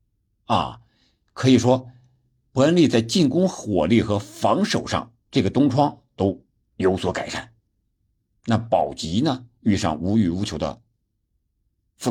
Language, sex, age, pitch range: Chinese, male, 50-69, 100-125 Hz